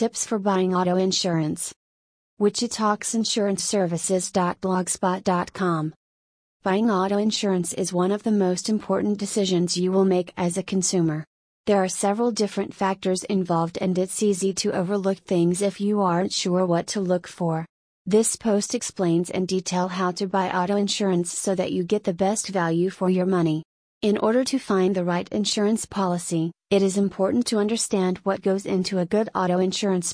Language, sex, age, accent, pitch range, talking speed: English, female, 30-49, American, 180-205 Hz, 165 wpm